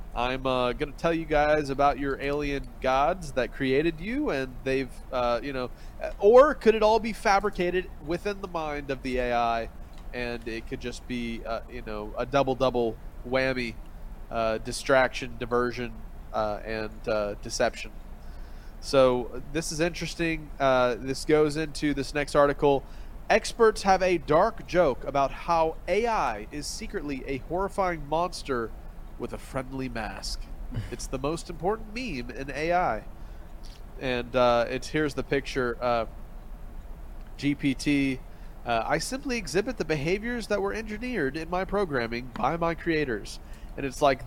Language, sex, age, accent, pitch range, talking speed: English, male, 30-49, American, 120-165 Hz, 150 wpm